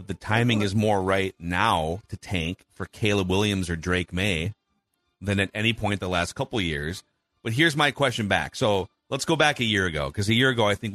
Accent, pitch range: American, 105-150 Hz